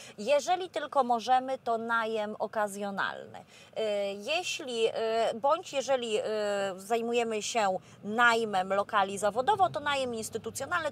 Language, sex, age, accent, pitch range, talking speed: Polish, female, 30-49, native, 225-290 Hz, 95 wpm